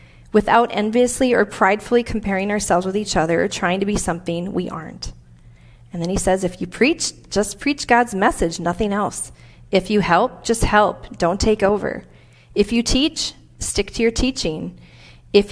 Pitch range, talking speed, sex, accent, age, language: 155-245 Hz, 175 wpm, female, American, 40-59, English